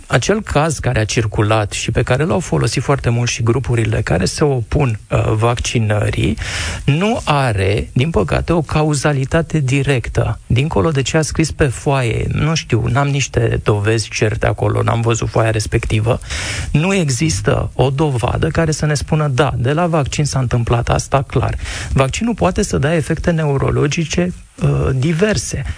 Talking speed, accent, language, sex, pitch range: 155 wpm, native, Romanian, male, 115-150 Hz